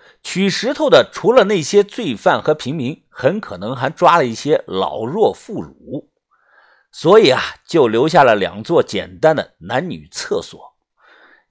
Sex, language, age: male, Chinese, 50-69